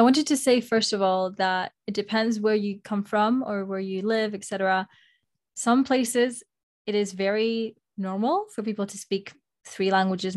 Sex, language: female, English